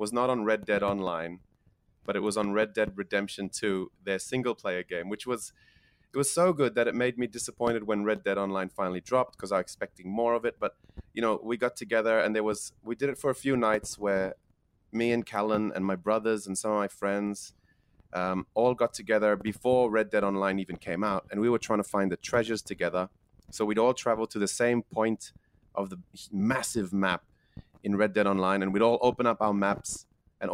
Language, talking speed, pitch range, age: English, 220 wpm, 100-120 Hz, 30-49